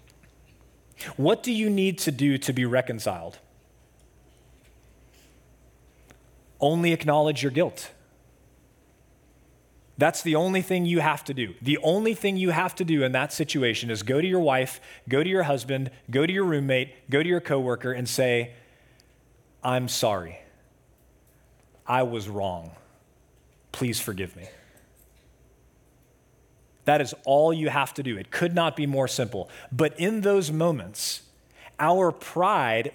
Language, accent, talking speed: English, American, 140 wpm